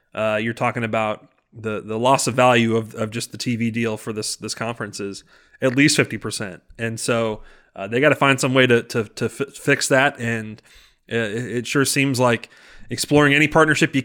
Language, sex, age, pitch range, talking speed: English, male, 30-49, 115-135 Hz, 205 wpm